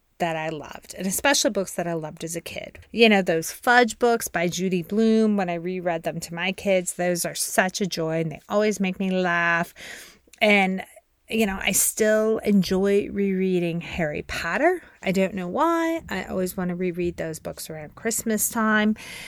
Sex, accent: female, American